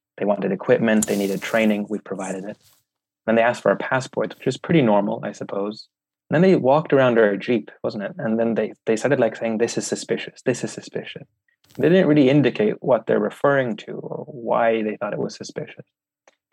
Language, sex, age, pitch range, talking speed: English, male, 20-39, 100-125 Hz, 215 wpm